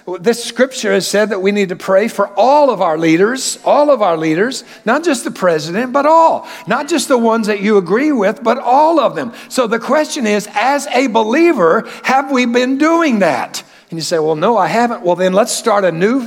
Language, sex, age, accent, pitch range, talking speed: English, male, 60-79, American, 195-255 Hz, 225 wpm